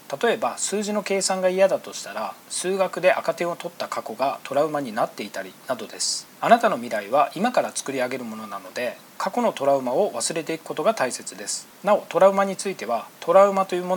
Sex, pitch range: male, 145-195 Hz